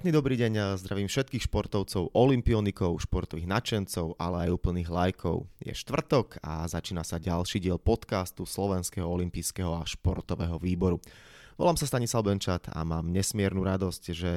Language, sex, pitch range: Slovak, male, 90-110 Hz